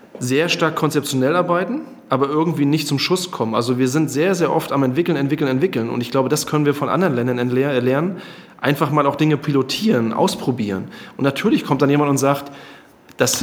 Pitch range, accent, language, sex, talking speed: 130-150 Hz, German, German, male, 195 wpm